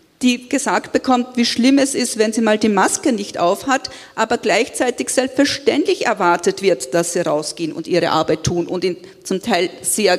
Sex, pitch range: female, 190-280 Hz